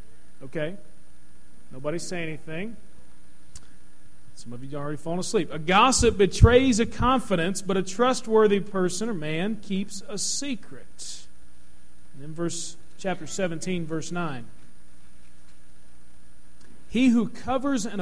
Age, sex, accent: 40-59, male, American